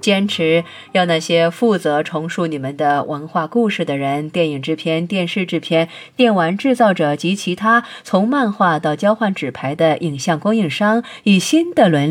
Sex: female